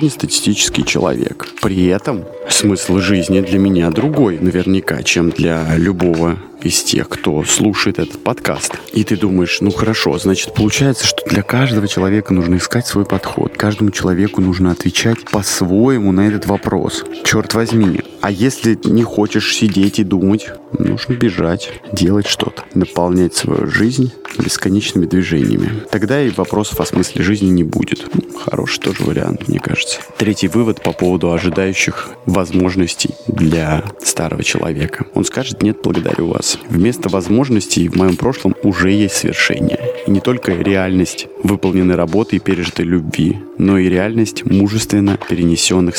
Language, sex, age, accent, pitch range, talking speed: Russian, male, 20-39, native, 90-105 Hz, 140 wpm